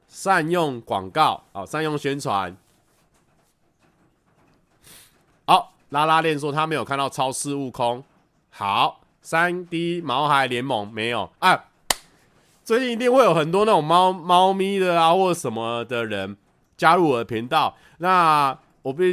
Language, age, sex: Chinese, 20-39, male